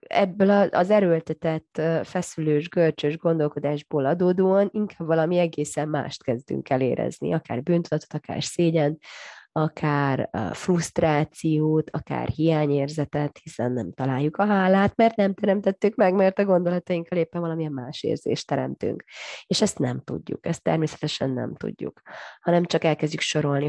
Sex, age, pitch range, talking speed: female, 30-49, 145-180 Hz, 125 wpm